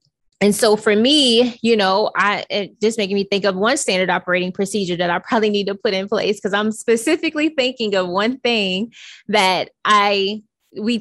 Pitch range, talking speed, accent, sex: 190-230 Hz, 185 wpm, American, female